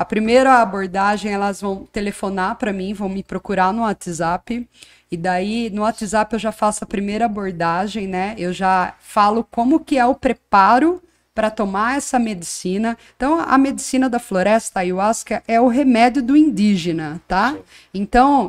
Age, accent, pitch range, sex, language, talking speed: 20-39, Brazilian, 195-250 Hz, female, Portuguese, 160 wpm